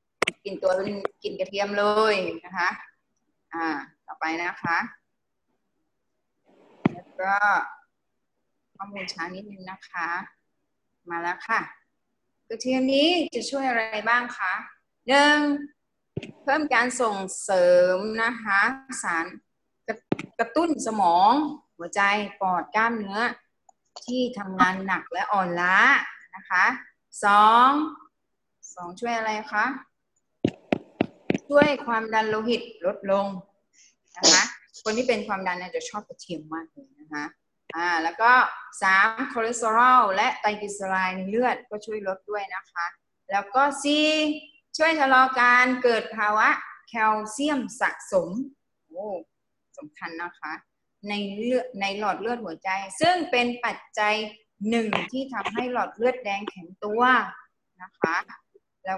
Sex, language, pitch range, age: female, Thai, 195-255 Hz, 20-39